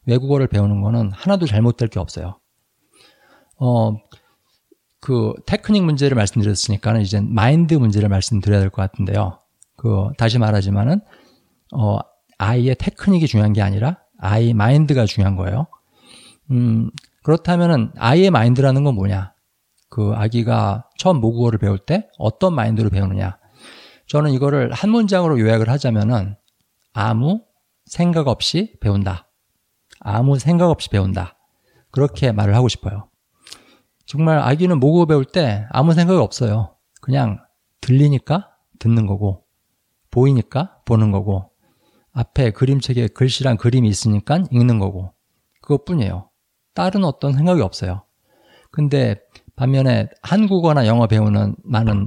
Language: Korean